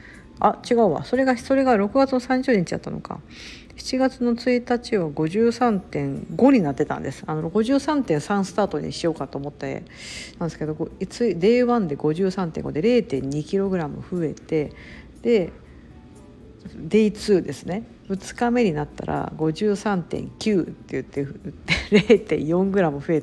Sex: female